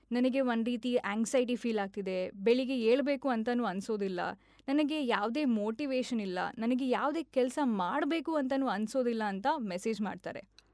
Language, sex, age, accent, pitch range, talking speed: Kannada, female, 20-39, native, 225-280 Hz, 130 wpm